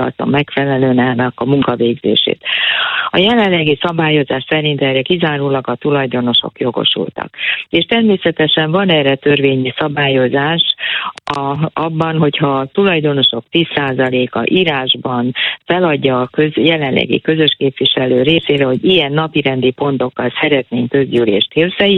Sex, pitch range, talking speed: female, 135-170 Hz, 110 wpm